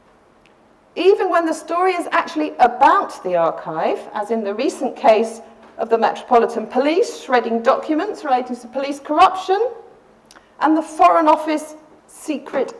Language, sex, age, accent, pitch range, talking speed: English, female, 40-59, British, 225-315 Hz, 135 wpm